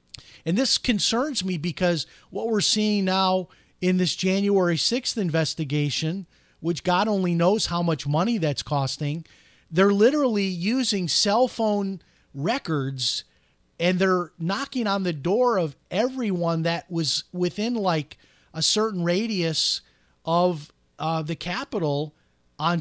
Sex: male